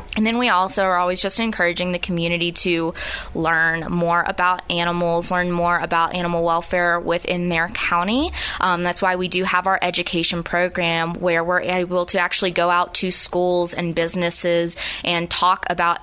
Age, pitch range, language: 20-39, 170-190 Hz, English